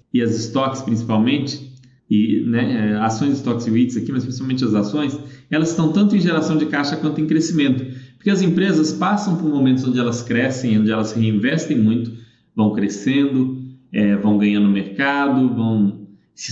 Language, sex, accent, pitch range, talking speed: Portuguese, male, Brazilian, 115-150 Hz, 170 wpm